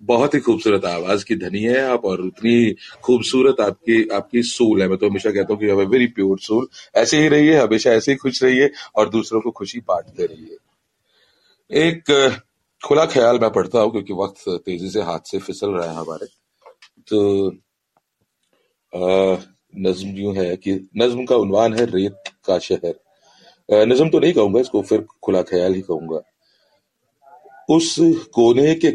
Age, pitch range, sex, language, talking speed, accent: 40-59, 95-135 Hz, male, Hindi, 165 wpm, native